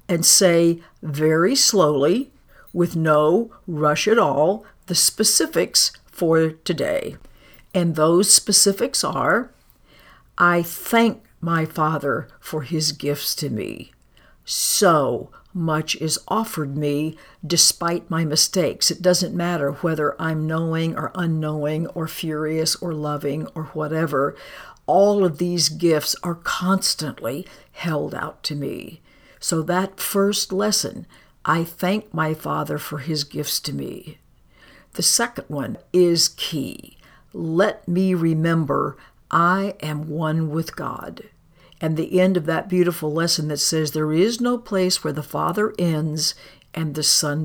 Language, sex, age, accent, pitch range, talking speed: English, female, 60-79, American, 155-180 Hz, 130 wpm